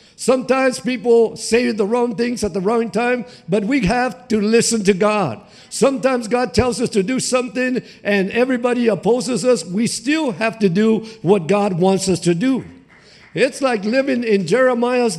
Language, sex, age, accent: English, male, 50-69, American